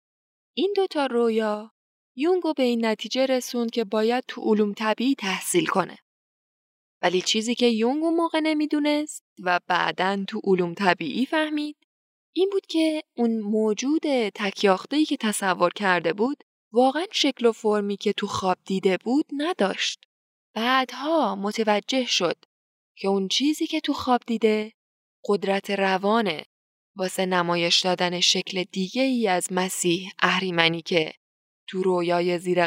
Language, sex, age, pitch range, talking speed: Persian, female, 10-29, 185-245 Hz, 130 wpm